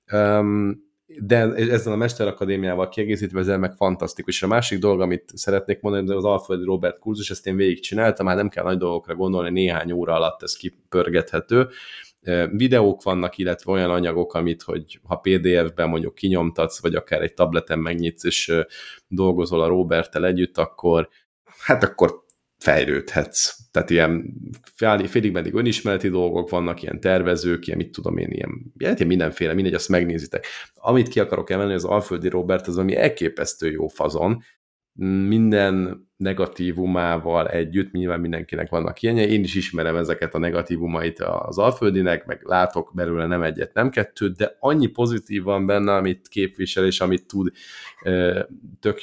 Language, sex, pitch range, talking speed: Hungarian, male, 90-100 Hz, 150 wpm